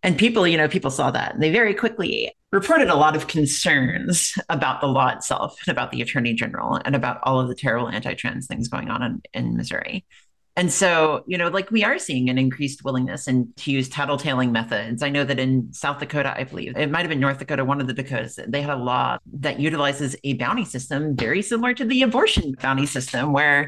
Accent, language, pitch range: American, English, 130-170 Hz